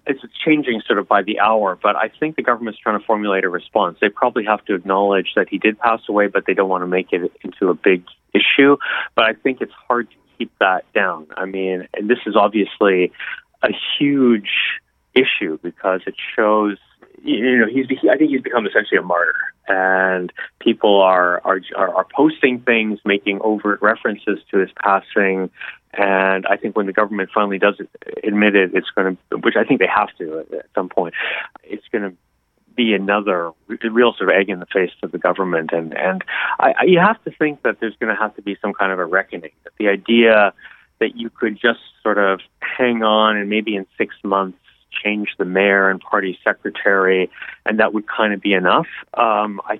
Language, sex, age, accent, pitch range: Korean, male, 30-49, American, 95-115 Hz